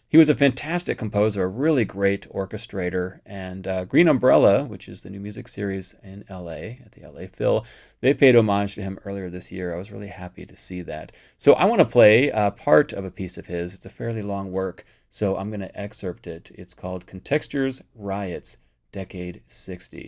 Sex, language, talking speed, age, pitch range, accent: male, English, 200 wpm, 30-49, 90-110 Hz, American